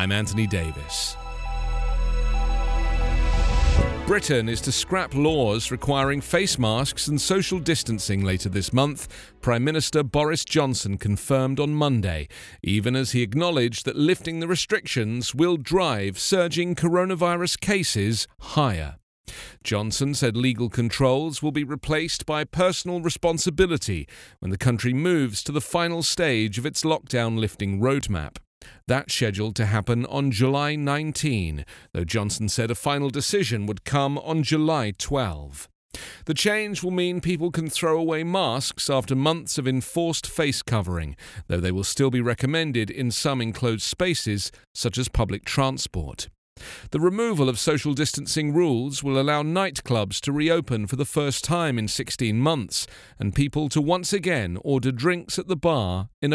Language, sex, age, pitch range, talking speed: English, male, 40-59, 110-160 Hz, 145 wpm